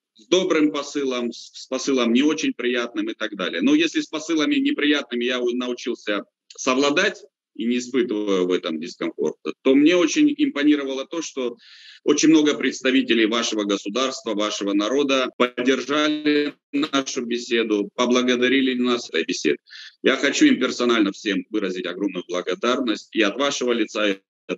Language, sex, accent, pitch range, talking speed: Russian, male, native, 120-165 Hz, 140 wpm